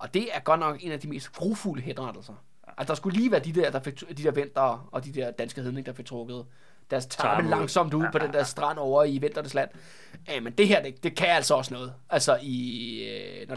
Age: 20-39